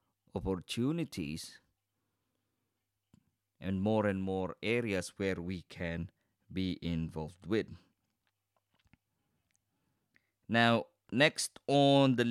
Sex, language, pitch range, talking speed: male, English, 100-130 Hz, 80 wpm